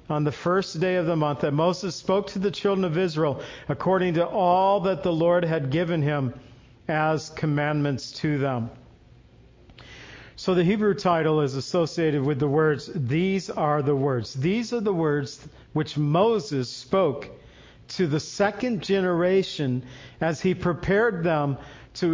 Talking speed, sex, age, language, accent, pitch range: 155 wpm, male, 50-69, English, American, 150-180 Hz